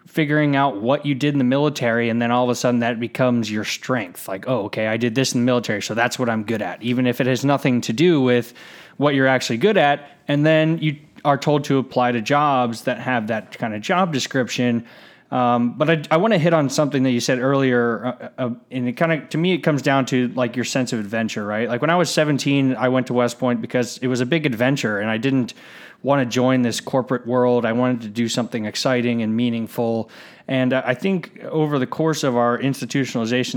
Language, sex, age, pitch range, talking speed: English, male, 20-39, 120-140 Hz, 240 wpm